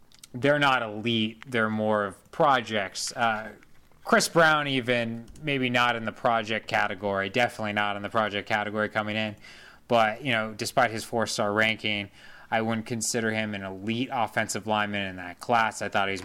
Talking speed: 170 wpm